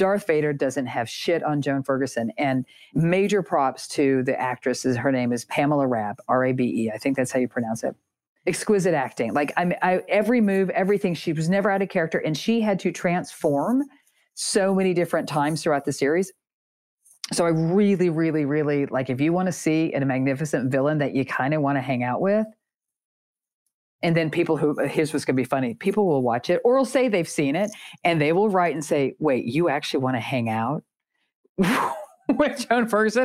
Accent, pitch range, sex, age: American, 140-200 Hz, female, 40-59